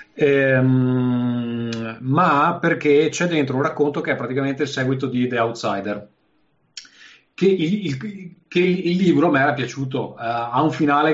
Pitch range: 110-145 Hz